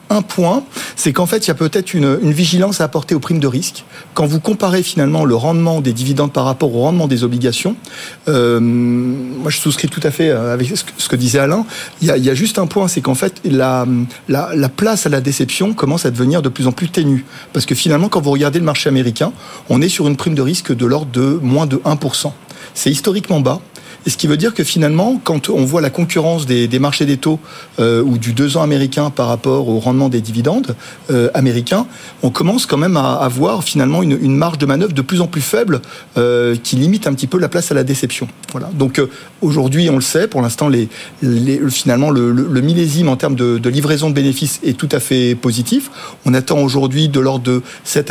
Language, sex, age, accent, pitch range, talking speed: French, male, 40-59, French, 130-165 Hz, 235 wpm